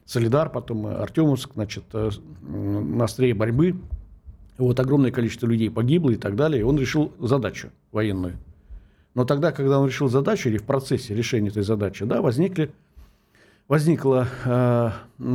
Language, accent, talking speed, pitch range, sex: Russian, native, 135 wpm, 110-140 Hz, male